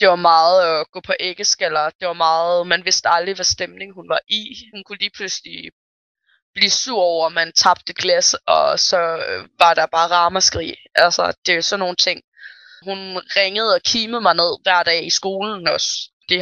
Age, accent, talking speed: 20-39, native, 195 wpm